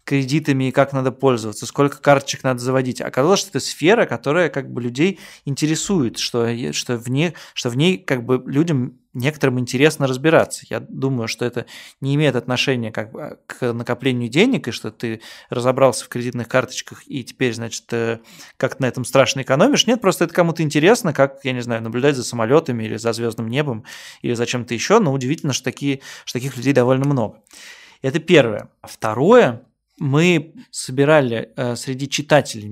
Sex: male